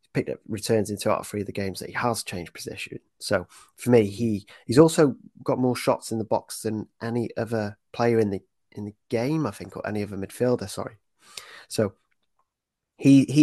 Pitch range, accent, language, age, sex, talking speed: 100-125 Hz, British, English, 30-49, male, 195 wpm